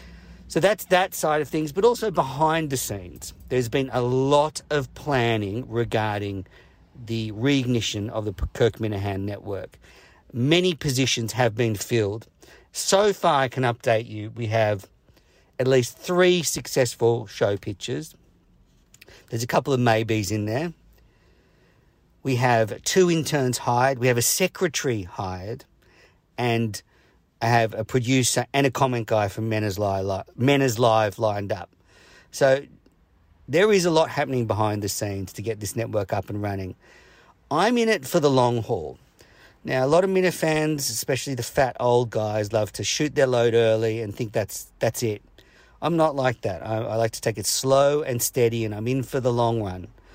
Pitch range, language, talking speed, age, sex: 110-140 Hz, English, 170 wpm, 50-69, male